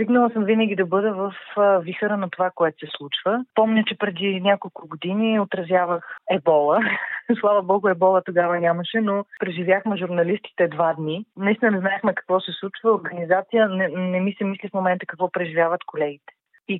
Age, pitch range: 30-49, 175-210 Hz